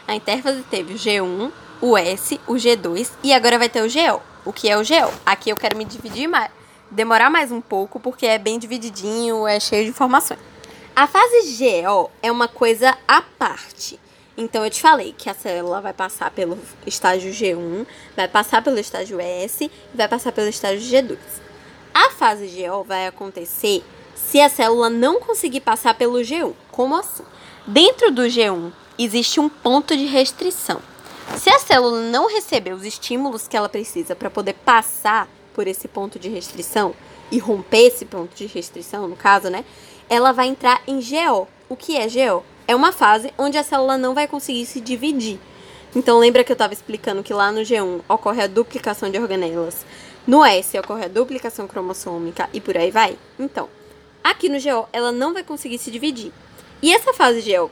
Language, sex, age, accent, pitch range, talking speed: Portuguese, female, 10-29, Brazilian, 205-270 Hz, 185 wpm